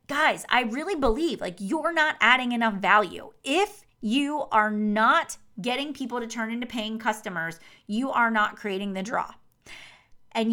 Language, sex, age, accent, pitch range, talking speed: English, female, 30-49, American, 210-285 Hz, 160 wpm